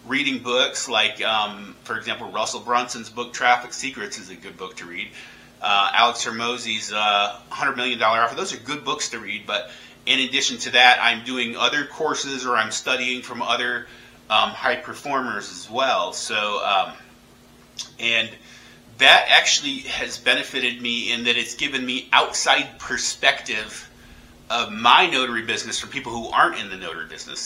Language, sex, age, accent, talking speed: English, male, 30-49, American, 165 wpm